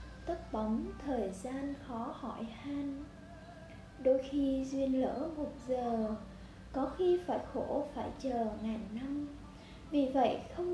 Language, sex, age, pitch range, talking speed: Vietnamese, female, 10-29, 230-295 Hz, 135 wpm